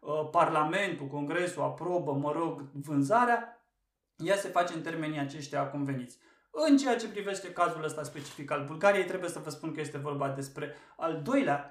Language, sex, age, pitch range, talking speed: Romanian, male, 20-39, 145-175 Hz, 165 wpm